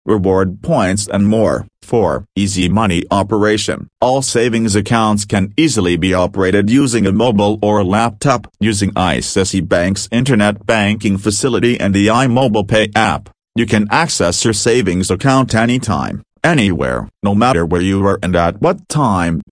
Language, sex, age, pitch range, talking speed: English, male, 40-59, 95-115 Hz, 150 wpm